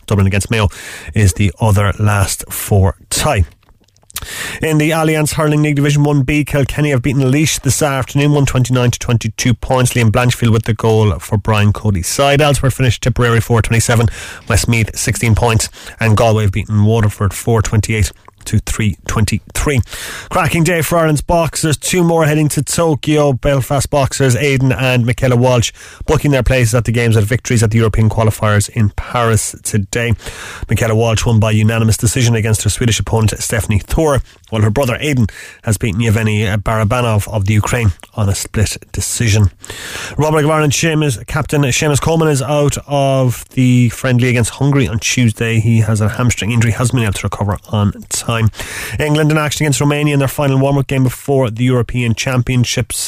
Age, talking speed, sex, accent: 30-49, 165 wpm, male, Irish